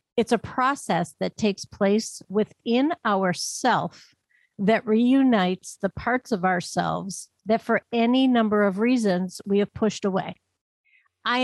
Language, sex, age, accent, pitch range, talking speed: English, female, 50-69, American, 195-235 Hz, 130 wpm